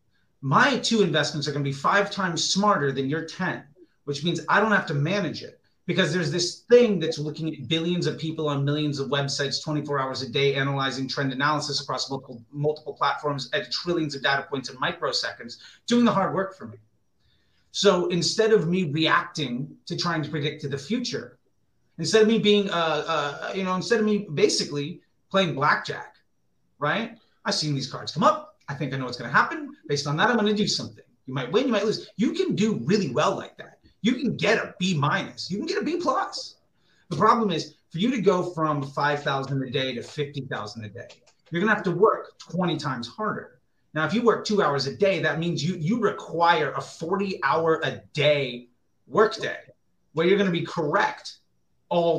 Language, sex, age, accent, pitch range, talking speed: English, male, 30-49, American, 140-200 Hz, 205 wpm